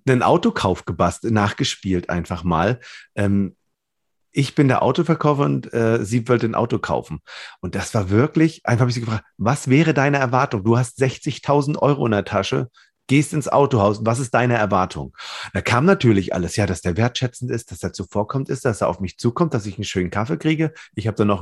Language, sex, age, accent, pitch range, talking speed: German, male, 40-59, German, 100-130 Hz, 205 wpm